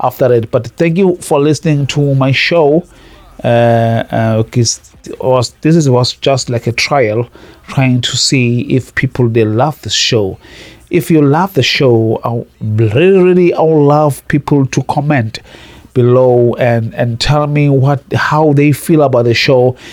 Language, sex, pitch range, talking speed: English, male, 125-160 Hz, 160 wpm